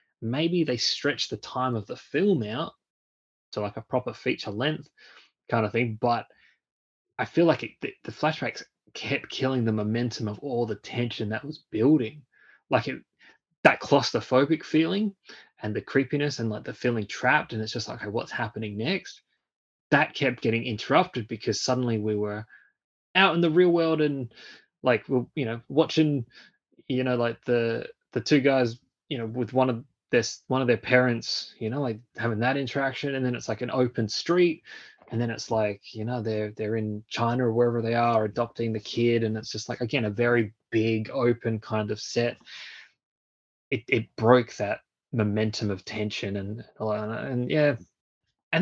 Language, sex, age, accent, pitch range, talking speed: English, male, 20-39, Australian, 110-145 Hz, 180 wpm